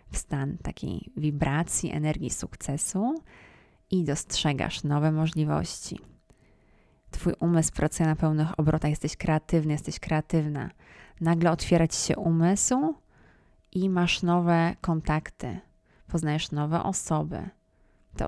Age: 20-39